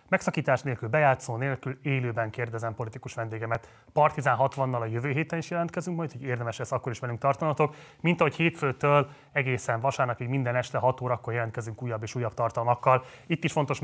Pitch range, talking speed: 120-140 Hz, 175 wpm